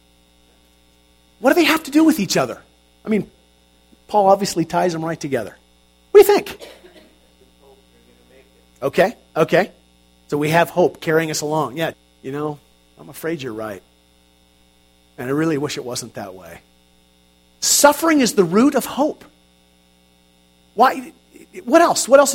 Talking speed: 150 wpm